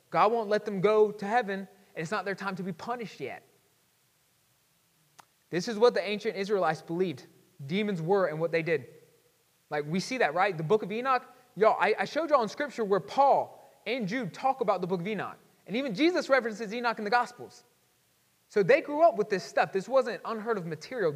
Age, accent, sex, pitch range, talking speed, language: 20-39, American, male, 165-220 Hz, 215 wpm, English